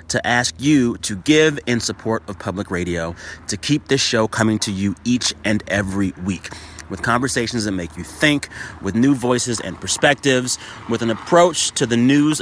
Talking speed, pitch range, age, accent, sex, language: 185 wpm, 95-130 Hz, 30-49, American, male, English